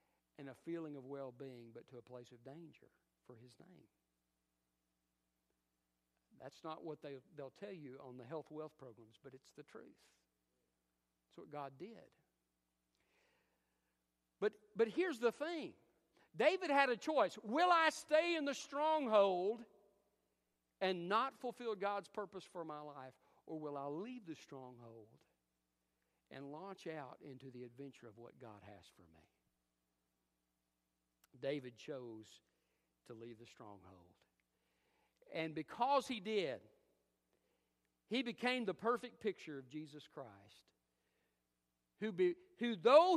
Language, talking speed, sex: English, 130 wpm, male